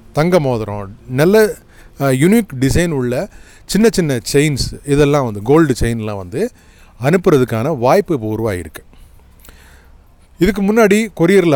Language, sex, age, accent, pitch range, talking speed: Tamil, male, 30-49, native, 110-145 Hz, 110 wpm